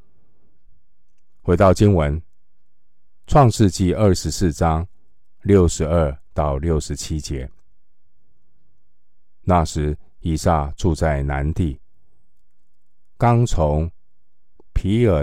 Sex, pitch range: male, 75-90 Hz